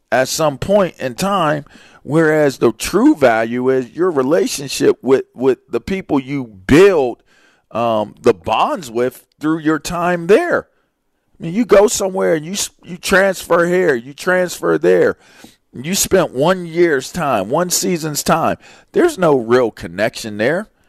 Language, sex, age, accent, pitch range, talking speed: English, male, 40-59, American, 120-170 Hz, 150 wpm